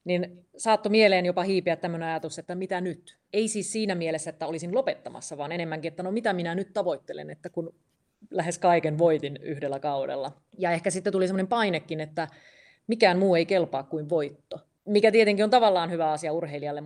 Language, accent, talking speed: Finnish, native, 185 wpm